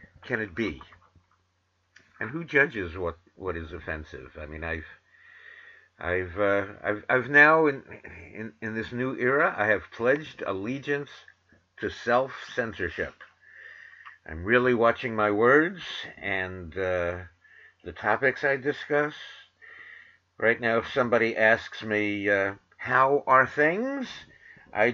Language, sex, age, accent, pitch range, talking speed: English, male, 50-69, American, 90-145 Hz, 125 wpm